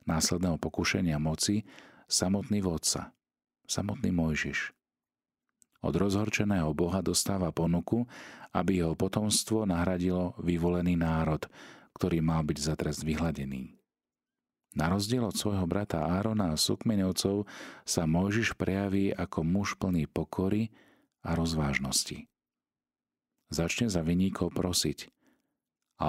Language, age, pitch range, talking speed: Slovak, 40-59, 80-95 Hz, 105 wpm